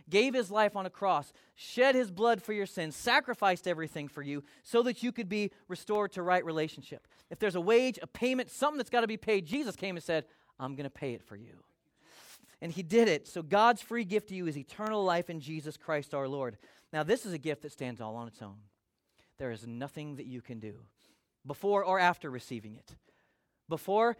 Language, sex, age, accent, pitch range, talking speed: English, male, 30-49, American, 150-215 Hz, 225 wpm